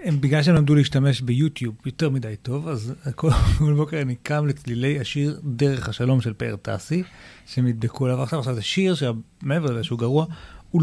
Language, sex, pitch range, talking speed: Hebrew, male, 120-155 Hz, 170 wpm